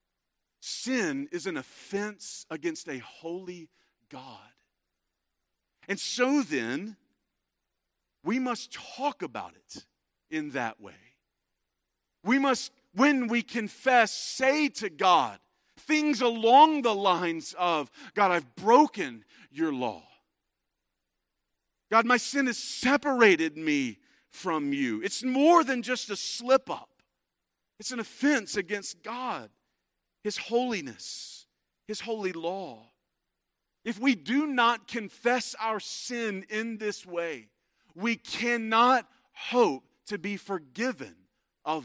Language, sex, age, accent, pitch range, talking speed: English, male, 40-59, American, 200-260 Hz, 115 wpm